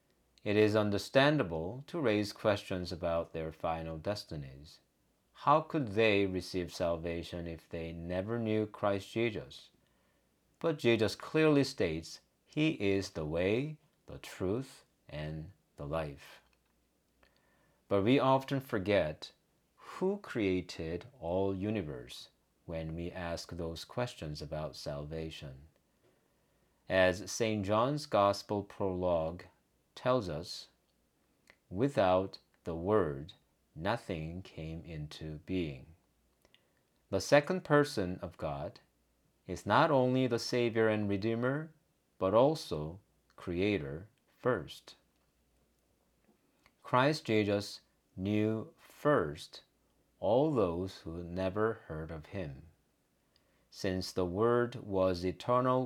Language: English